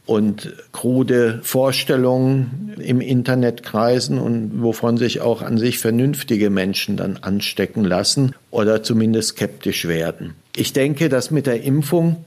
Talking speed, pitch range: 130 wpm, 105-135 Hz